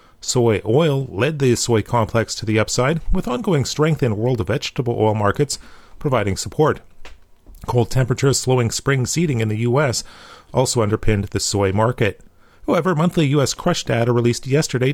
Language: English